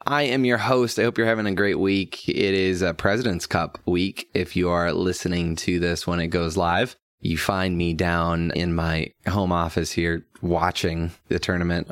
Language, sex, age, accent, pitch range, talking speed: English, male, 20-39, American, 85-100 Hz, 195 wpm